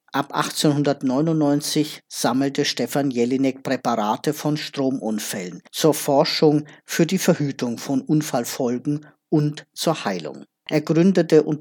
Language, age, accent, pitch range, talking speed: German, 50-69, German, 135-155 Hz, 110 wpm